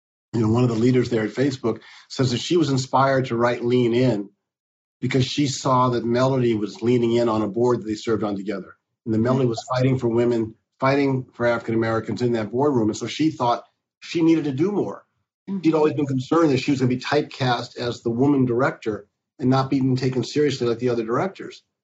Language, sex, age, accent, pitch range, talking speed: English, male, 50-69, American, 115-130 Hz, 220 wpm